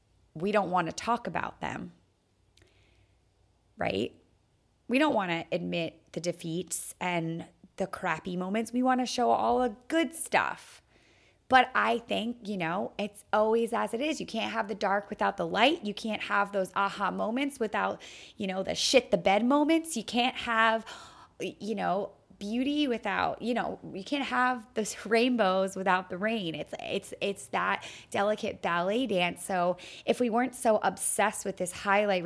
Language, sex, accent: English, female, American